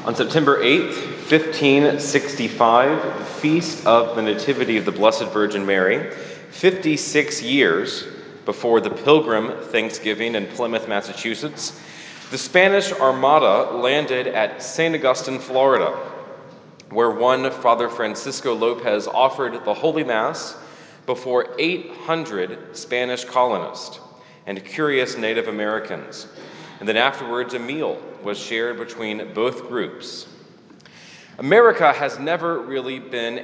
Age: 30-49